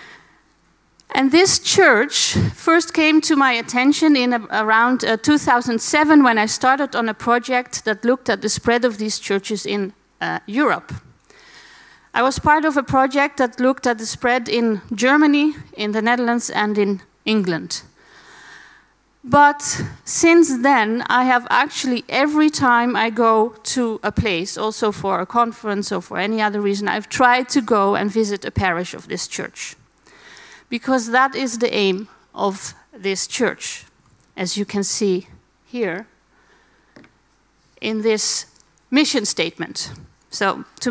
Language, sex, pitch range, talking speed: Dutch, female, 215-275 Hz, 145 wpm